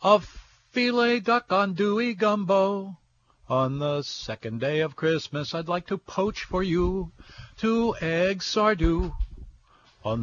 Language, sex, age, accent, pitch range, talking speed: English, male, 60-79, American, 160-210 Hz, 125 wpm